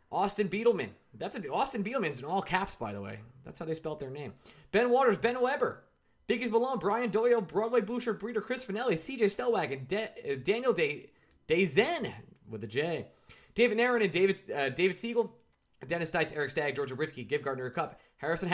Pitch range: 165-230 Hz